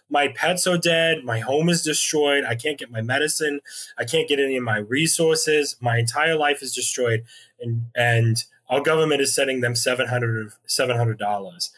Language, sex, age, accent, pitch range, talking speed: English, male, 20-39, American, 130-170 Hz, 170 wpm